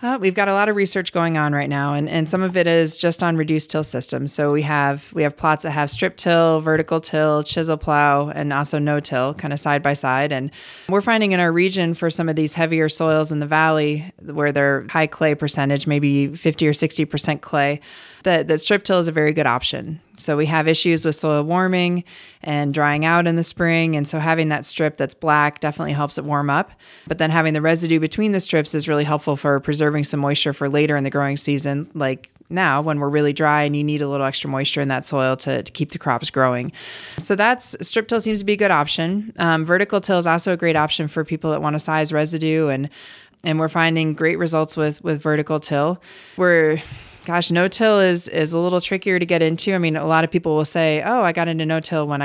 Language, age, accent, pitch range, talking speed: English, 20-39, American, 145-170 Hz, 235 wpm